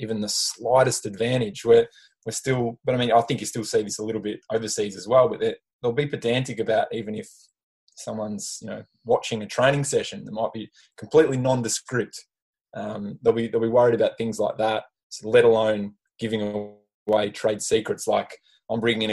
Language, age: English, 20-39